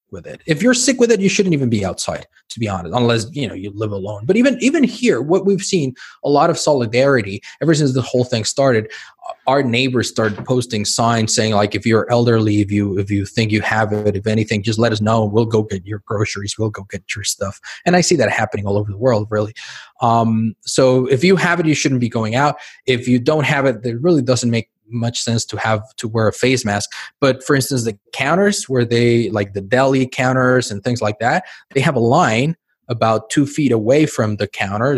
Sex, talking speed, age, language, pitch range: male, 235 wpm, 20-39, English, 110-140 Hz